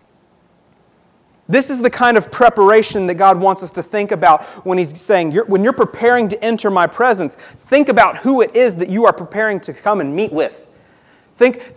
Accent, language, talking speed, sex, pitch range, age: American, English, 195 wpm, male, 180-245 Hz, 30-49